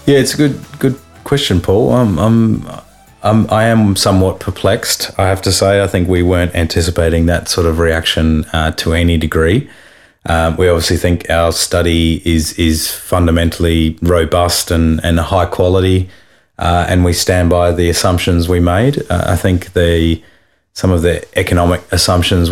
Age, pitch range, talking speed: 30-49, 80-90 Hz, 170 wpm